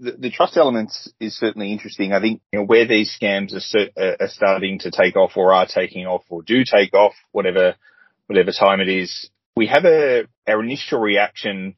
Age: 30-49